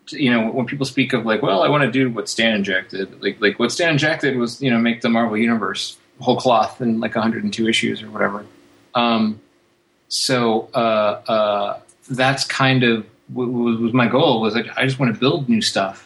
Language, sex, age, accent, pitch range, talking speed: English, male, 30-49, American, 105-125 Hz, 205 wpm